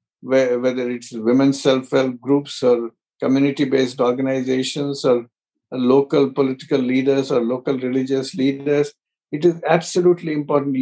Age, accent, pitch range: 50-69, Indian, 135-170 Hz